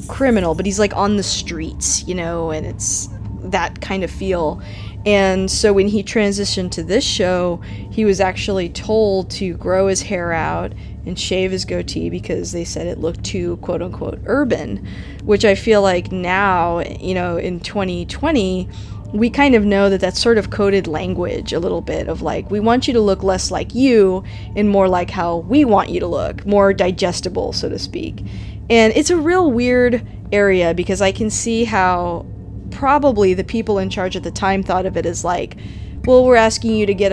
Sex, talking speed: female, 195 wpm